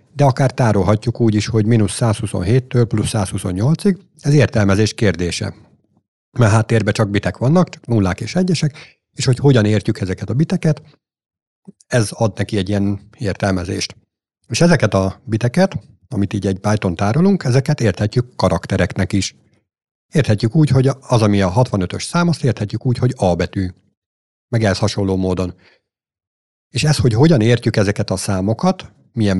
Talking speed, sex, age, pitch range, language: 155 wpm, male, 60-79, 100-135 Hz, Hungarian